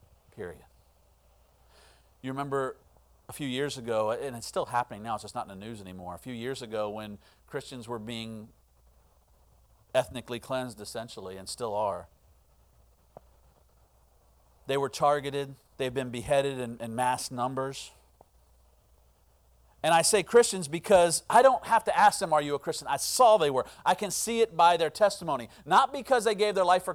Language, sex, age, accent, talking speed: English, male, 40-59, American, 170 wpm